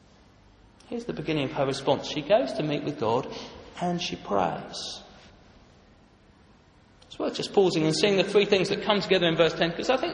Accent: British